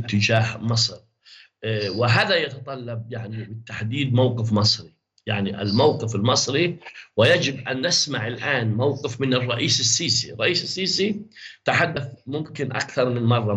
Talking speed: 115 wpm